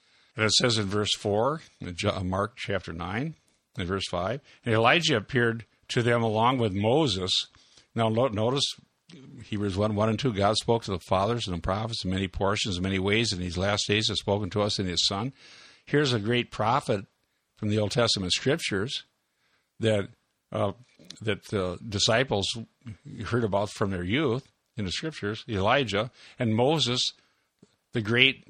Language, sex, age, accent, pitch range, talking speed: English, male, 60-79, American, 105-130 Hz, 165 wpm